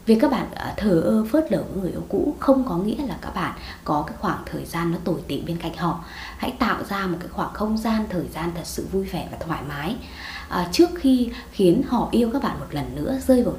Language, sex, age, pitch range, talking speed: Vietnamese, female, 20-39, 175-255 Hz, 255 wpm